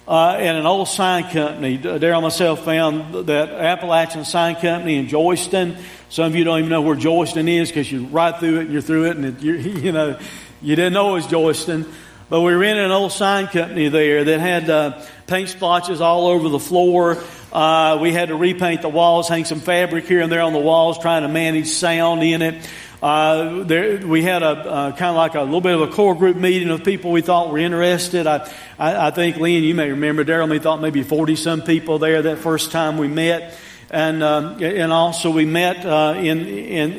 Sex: male